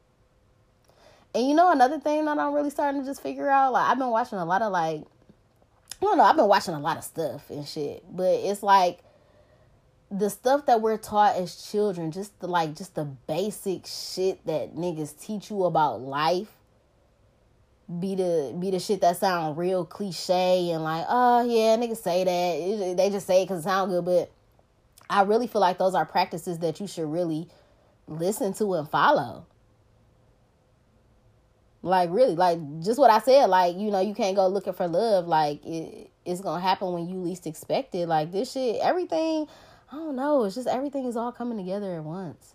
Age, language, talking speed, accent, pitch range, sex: 20-39, English, 195 wpm, American, 160-225 Hz, female